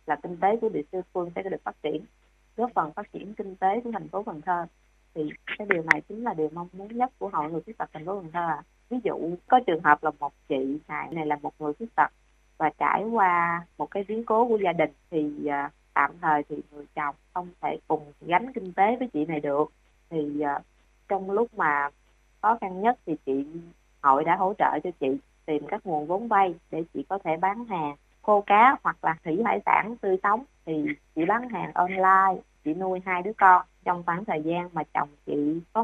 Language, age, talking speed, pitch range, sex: Vietnamese, 20-39, 230 wpm, 155-200 Hz, female